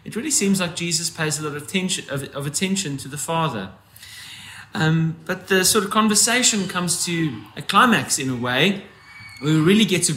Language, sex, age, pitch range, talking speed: English, male, 30-49, 125-185 Hz, 195 wpm